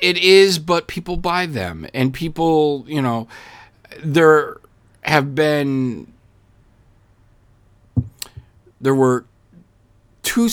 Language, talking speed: English, 90 wpm